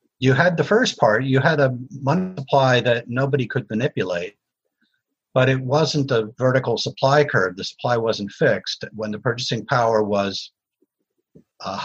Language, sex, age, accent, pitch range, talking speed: English, male, 50-69, American, 110-135 Hz, 155 wpm